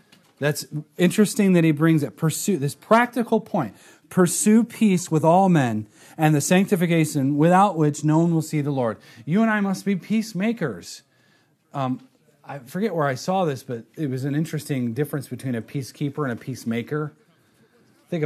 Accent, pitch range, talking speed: American, 125-180 Hz, 170 wpm